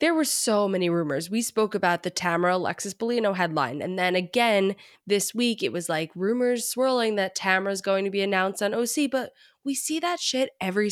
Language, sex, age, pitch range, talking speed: English, female, 20-39, 180-230 Hz, 205 wpm